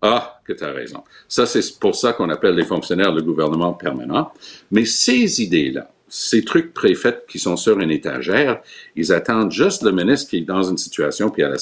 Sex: male